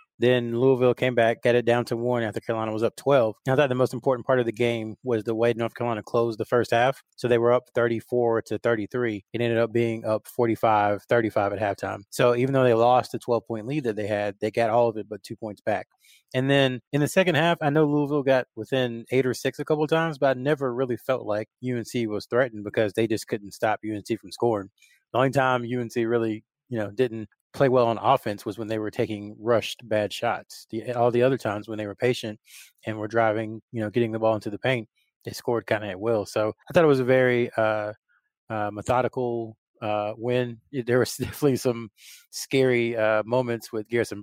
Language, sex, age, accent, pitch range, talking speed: English, male, 20-39, American, 110-125 Hz, 230 wpm